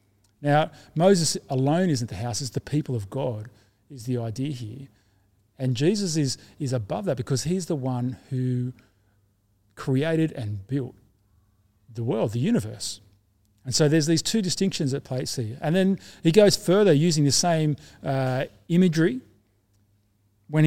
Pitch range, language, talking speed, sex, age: 105-155 Hz, English, 155 wpm, male, 40-59